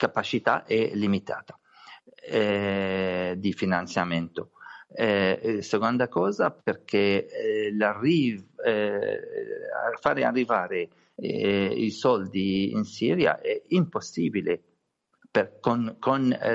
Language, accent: Italian, native